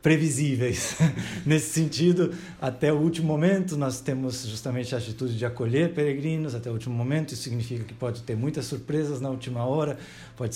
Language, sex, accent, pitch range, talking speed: Portuguese, male, Brazilian, 120-140 Hz, 170 wpm